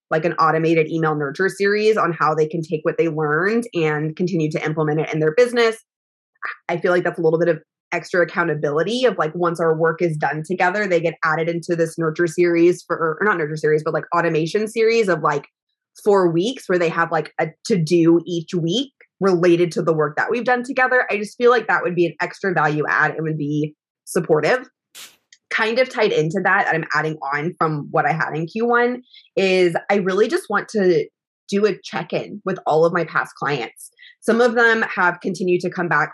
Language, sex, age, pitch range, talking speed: English, female, 20-39, 160-220 Hz, 215 wpm